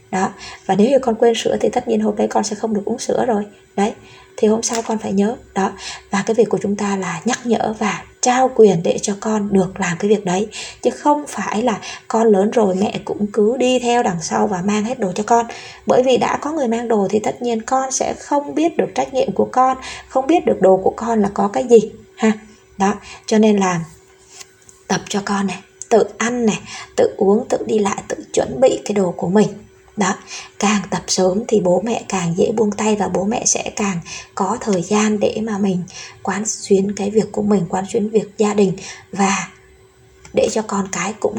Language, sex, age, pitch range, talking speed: Vietnamese, female, 20-39, 195-235 Hz, 230 wpm